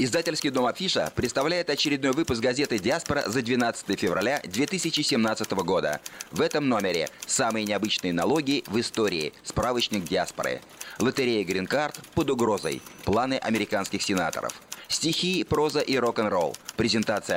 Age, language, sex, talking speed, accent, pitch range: 30-49, Russian, male, 120 wpm, native, 110-150 Hz